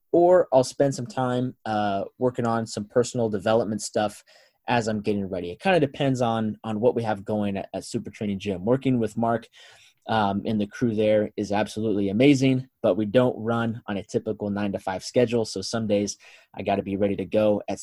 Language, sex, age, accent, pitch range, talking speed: English, male, 20-39, American, 105-125 Hz, 215 wpm